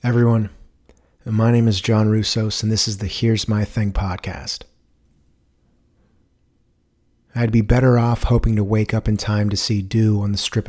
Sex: male